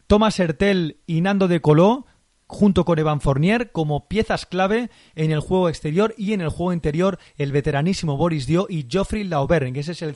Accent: Spanish